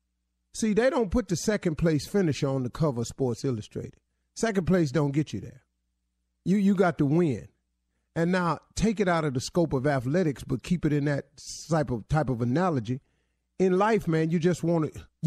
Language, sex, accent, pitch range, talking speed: English, male, American, 140-200 Hz, 205 wpm